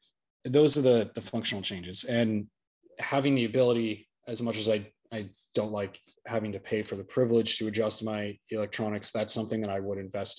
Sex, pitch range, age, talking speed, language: male, 105-120 Hz, 20-39, 190 wpm, English